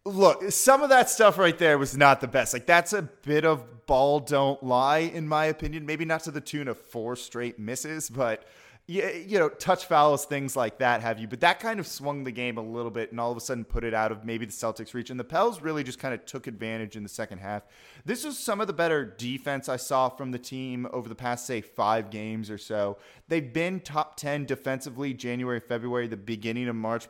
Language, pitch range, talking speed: English, 115-150 Hz, 240 wpm